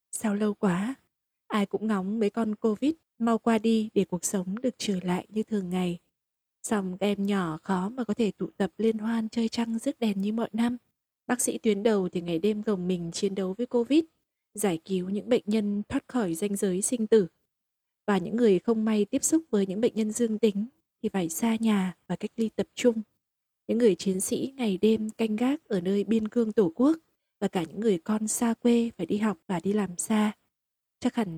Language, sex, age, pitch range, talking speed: Vietnamese, female, 20-39, 195-230 Hz, 220 wpm